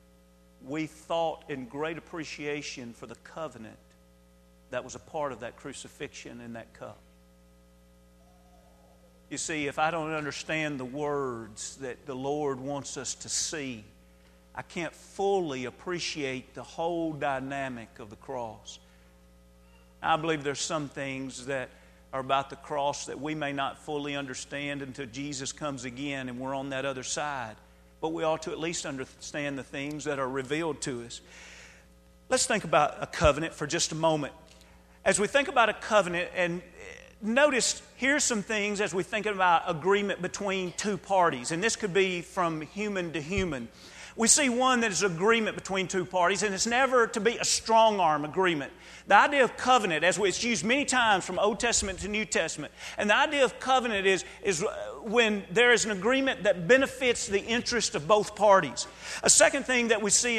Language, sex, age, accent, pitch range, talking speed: English, male, 50-69, American, 135-210 Hz, 175 wpm